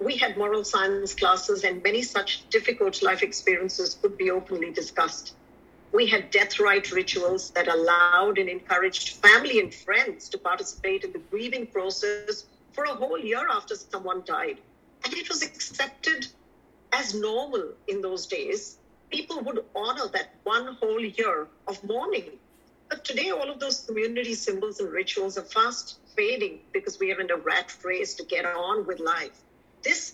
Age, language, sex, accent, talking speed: 50-69, English, female, Indian, 165 wpm